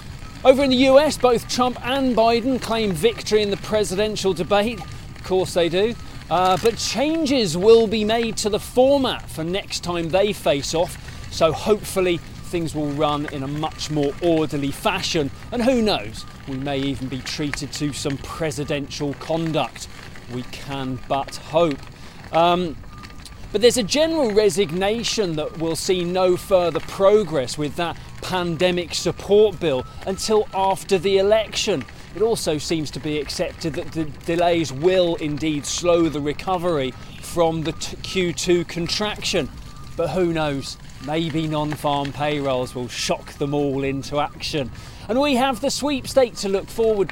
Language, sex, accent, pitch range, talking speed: English, male, British, 145-210 Hz, 155 wpm